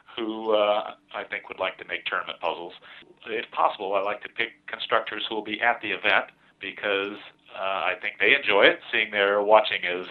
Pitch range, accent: 100-120 Hz, American